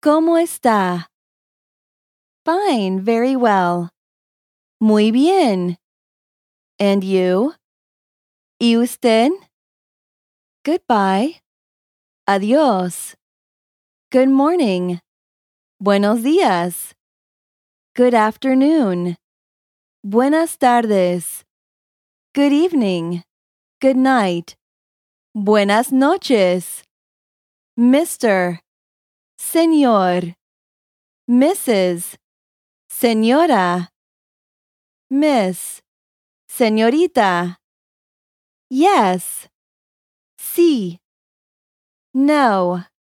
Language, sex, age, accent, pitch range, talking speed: English, female, 20-39, American, 185-275 Hz, 50 wpm